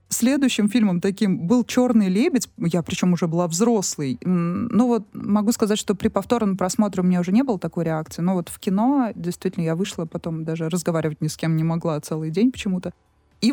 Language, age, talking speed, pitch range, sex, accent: Russian, 20-39, 200 wpm, 175-225 Hz, female, native